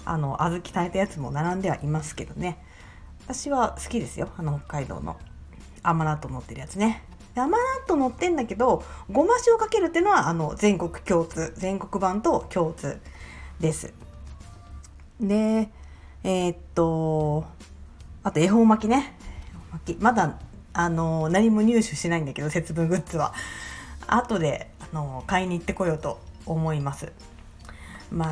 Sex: female